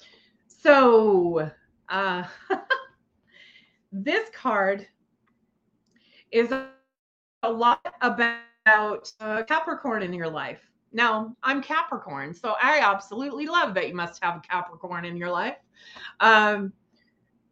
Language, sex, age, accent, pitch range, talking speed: English, female, 30-49, American, 195-255 Hz, 105 wpm